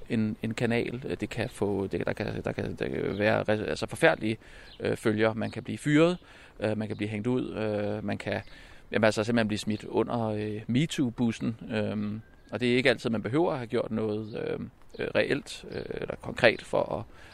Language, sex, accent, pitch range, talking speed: Danish, male, native, 105-120 Hz, 195 wpm